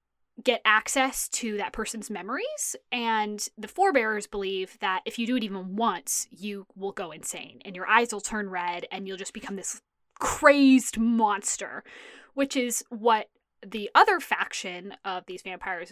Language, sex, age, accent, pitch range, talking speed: English, female, 20-39, American, 200-260 Hz, 160 wpm